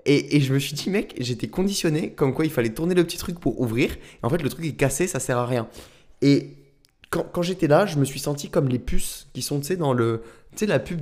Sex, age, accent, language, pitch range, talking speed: male, 20-39, French, French, 115-155 Hz, 265 wpm